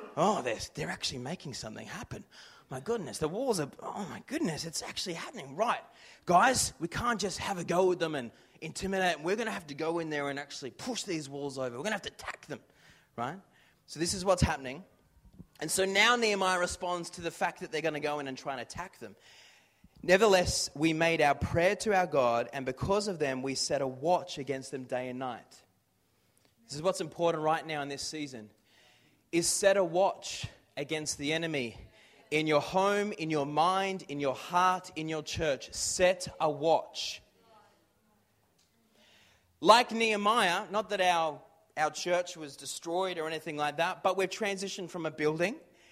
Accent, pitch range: Australian, 145-195 Hz